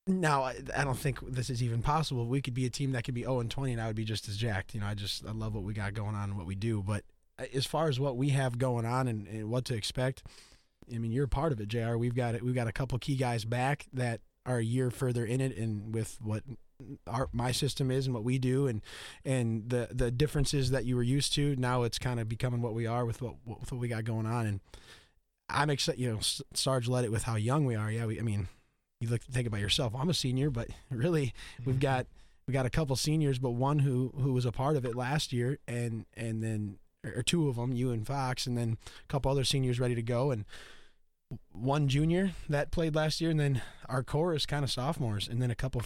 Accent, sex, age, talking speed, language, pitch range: American, male, 20-39, 265 wpm, English, 115-135 Hz